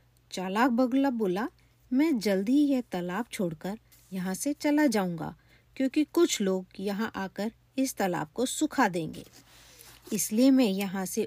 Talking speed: 145 wpm